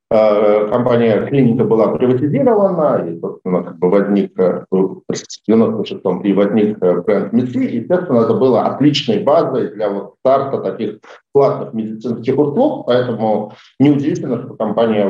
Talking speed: 120 wpm